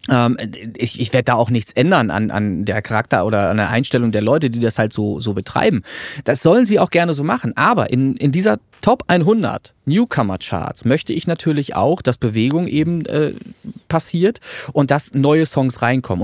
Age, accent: 30-49, German